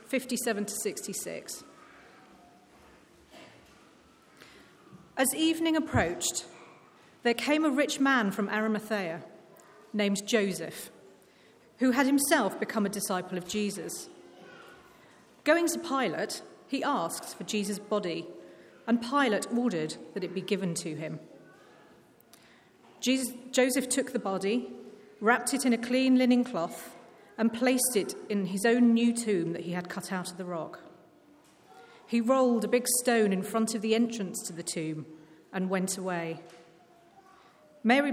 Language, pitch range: English, 195-260 Hz